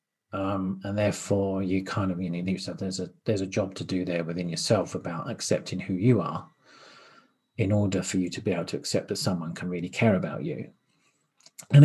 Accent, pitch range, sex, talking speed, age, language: British, 95-125 Hz, male, 205 wpm, 40-59, English